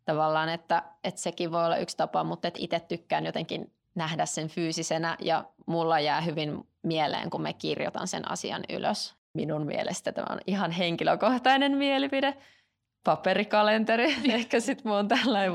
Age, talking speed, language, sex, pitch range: 20-39, 150 wpm, Finnish, female, 160-205 Hz